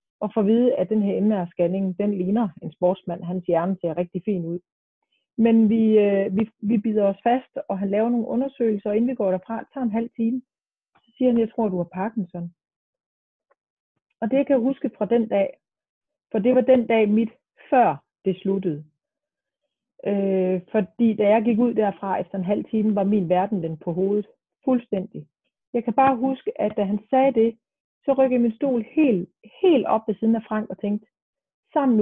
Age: 30-49